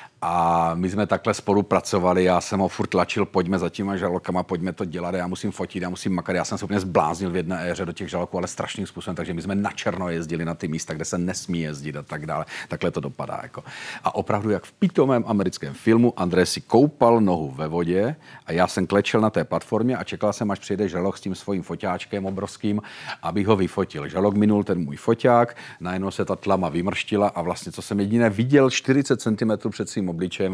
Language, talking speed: Czech, 225 wpm